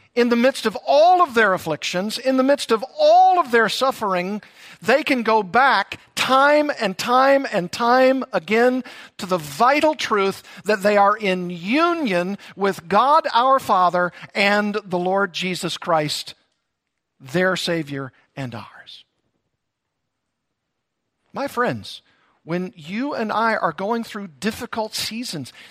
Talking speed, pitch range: 140 wpm, 185-265 Hz